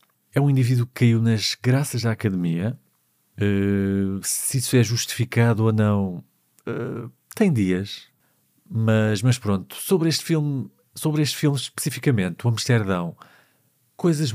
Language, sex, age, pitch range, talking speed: Portuguese, male, 50-69, 100-130 Hz, 115 wpm